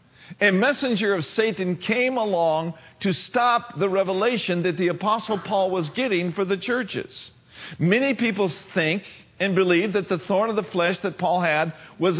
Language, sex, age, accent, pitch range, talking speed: English, male, 50-69, American, 160-225 Hz, 165 wpm